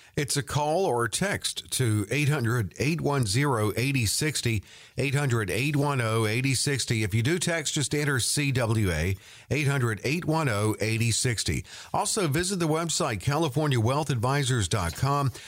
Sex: male